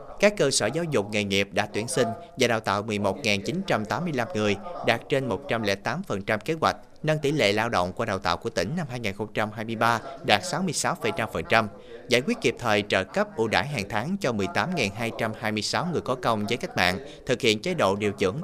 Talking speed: 190 wpm